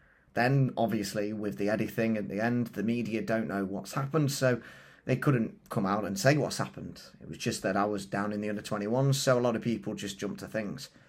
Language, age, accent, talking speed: English, 30-49, British, 235 wpm